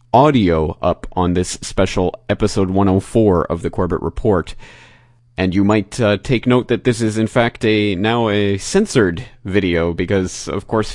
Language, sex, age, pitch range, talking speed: English, male, 30-49, 95-125 Hz, 165 wpm